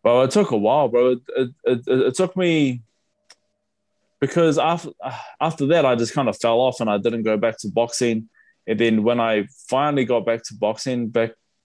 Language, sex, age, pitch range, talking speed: English, male, 20-39, 105-130 Hz, 200 wpm